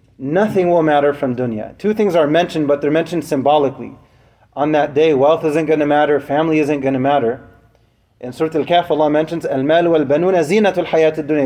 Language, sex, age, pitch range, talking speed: English, male, 30-49, 130-165 Hz, 185 wpm